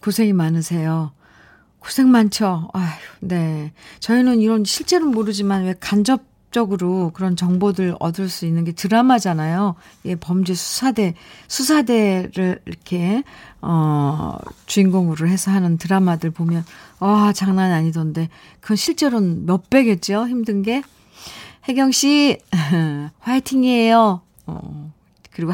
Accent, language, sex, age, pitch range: native, Korean, female, 50-69, 175-255 Hz